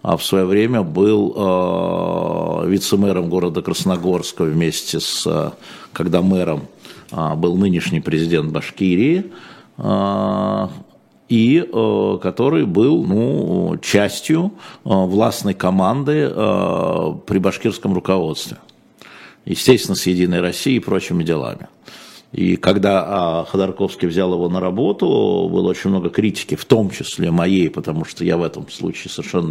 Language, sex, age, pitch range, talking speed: Russian, male, 50-69, 85-100 Hz, 125 wpm